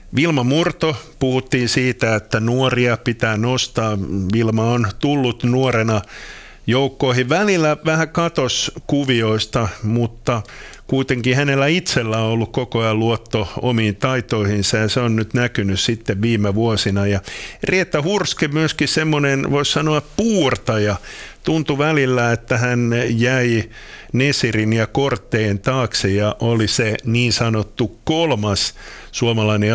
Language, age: Swedish, 50-69